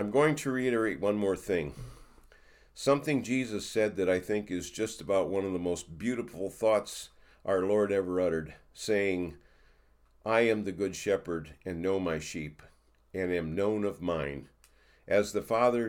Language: English